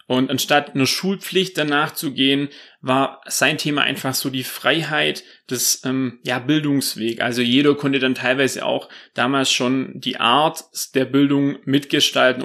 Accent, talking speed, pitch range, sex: German, 140 wpm, 125-150 Hz, male